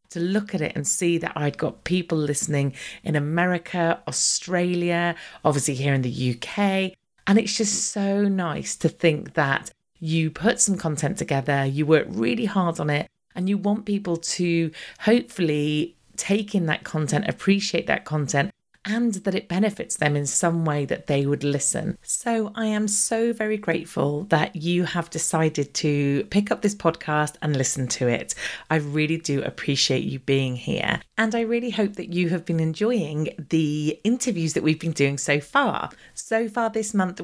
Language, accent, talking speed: English, British, 175 wpm